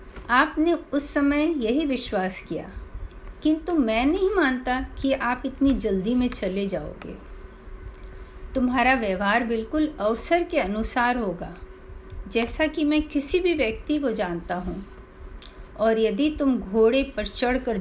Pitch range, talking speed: 195-280 Hz, 135 wpm